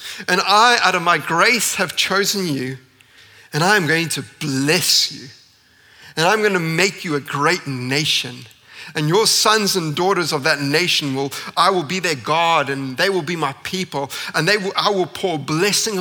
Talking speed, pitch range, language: 185 wpm, 140-185 Hz, English